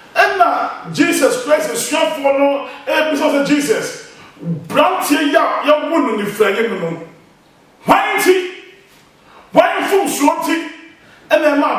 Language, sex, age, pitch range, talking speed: English, male, 40-59, 255-360 Hz, 105 wpm